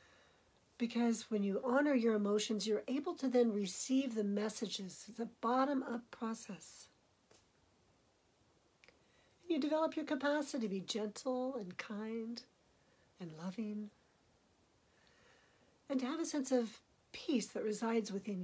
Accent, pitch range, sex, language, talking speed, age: American, 200-265 Hz, female, English, 125 wpm, 60-79